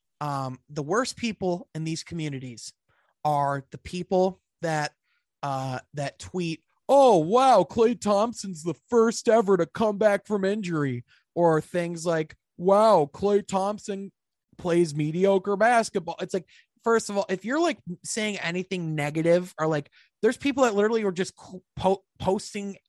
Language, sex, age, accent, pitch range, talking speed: English, male, 20-39, American, 150-195 Hz, 145 wpm